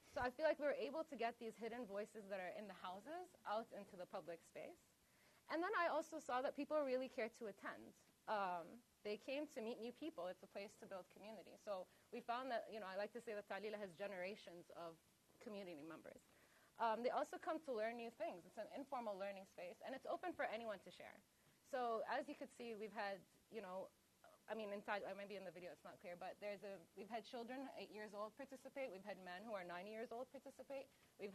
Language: English